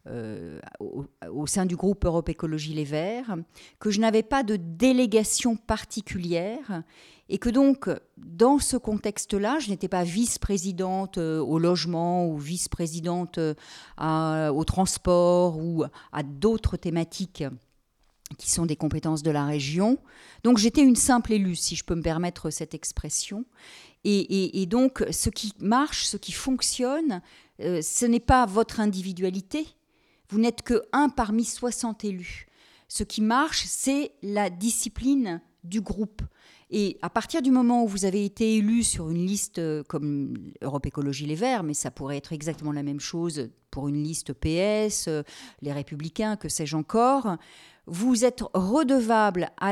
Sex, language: female, French